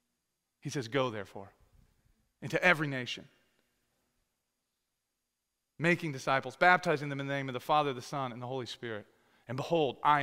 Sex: male